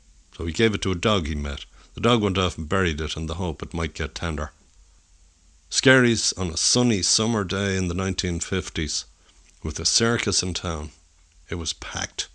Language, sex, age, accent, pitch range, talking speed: English, male, 60-79, Irish, 80-110 Hz, 195 wpm